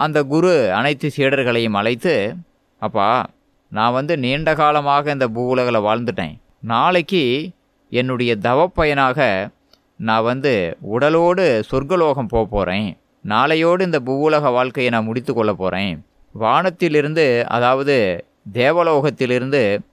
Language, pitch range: Tamil, 120-170 Hz